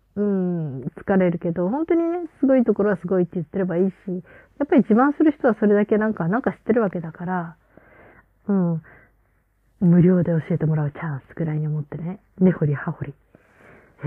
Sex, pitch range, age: female, 165-215 Hz, 30-49